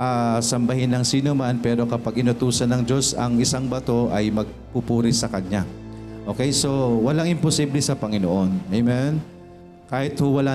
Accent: native